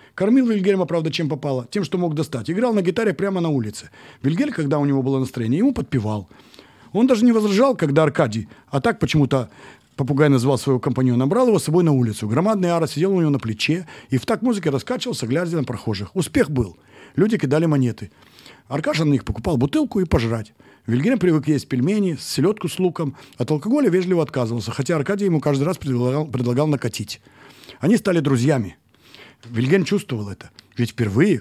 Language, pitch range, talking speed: English, 120-180 Hz, 185 wpm